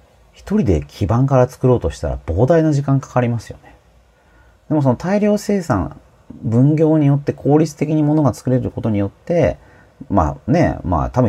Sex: male